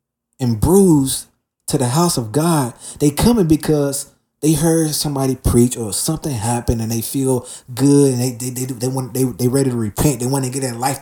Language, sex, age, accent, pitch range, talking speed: English, male, 20-39, American, 140-205 Hz, 205 wpm